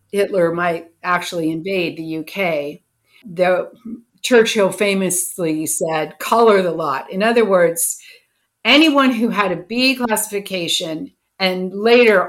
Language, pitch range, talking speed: English, 175-225 Hz, 115 wpm